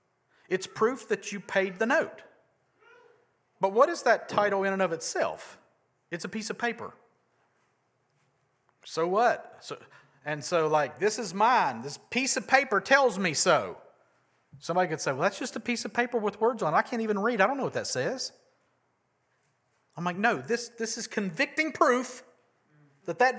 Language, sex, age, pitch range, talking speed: English, male, 40-59, 155-225 Hz, 180 wpm